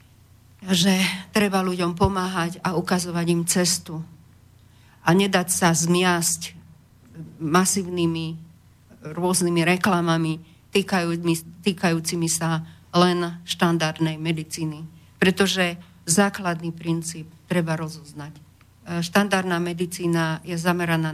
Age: 50-69